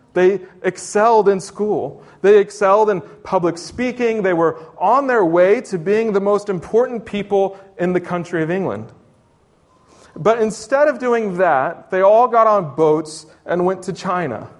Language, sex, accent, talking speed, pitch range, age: English, male, American, 160 wpm, 165-210 Hz, 30-49